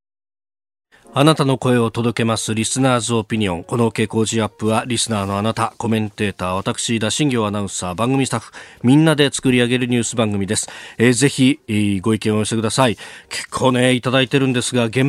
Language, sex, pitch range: Japanese, male, 110-145 Hz